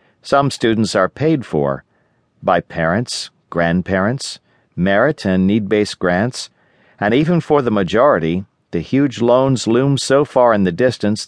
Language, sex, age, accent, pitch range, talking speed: English, male, 50-69, American, 95-135 Hz, 140 wpm